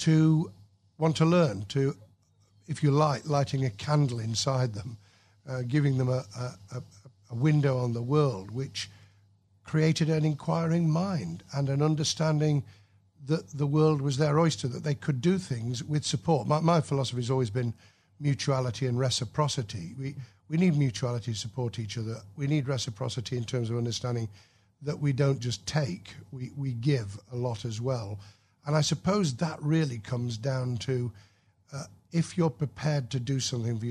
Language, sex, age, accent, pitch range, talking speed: English, male, 50-69, British, 115-145 Hz, 170 wpm